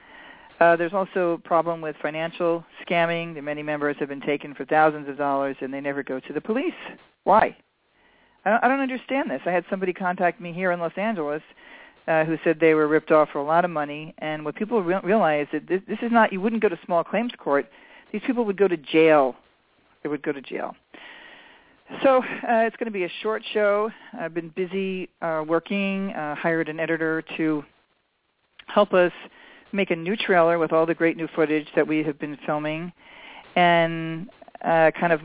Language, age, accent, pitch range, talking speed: English, 40-59, American, 150-175 Hz, 205 wpm